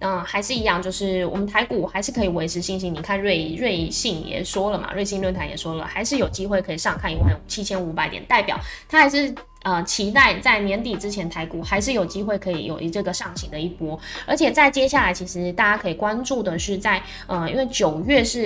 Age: 10-29